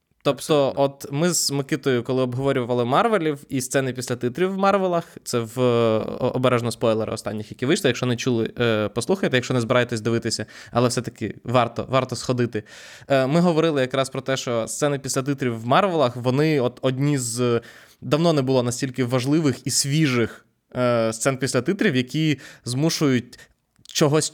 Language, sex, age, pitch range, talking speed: Ukrainian, male, 20-39, 120-140 Hz, 155 wpm